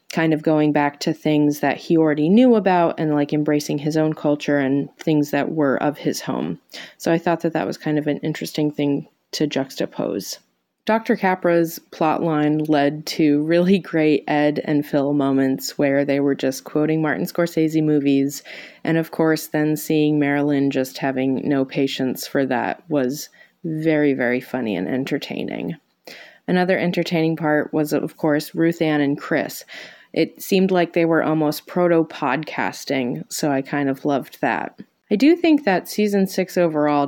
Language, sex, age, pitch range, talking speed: English, female, 20-39, 140-170 Hz, 170 wpm